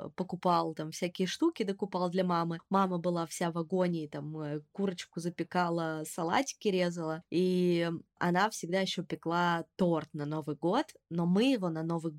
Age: 20-39